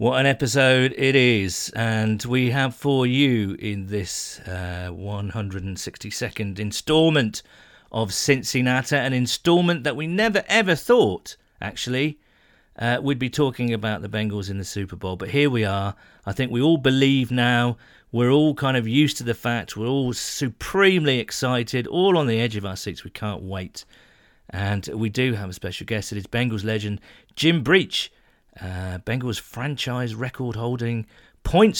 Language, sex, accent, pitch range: English, male, British, 105-135 Hz